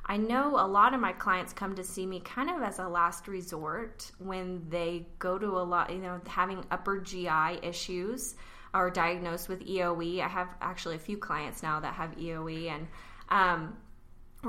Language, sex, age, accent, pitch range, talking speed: English, female, 20-39, American, 165-195 Hz, 185 wpm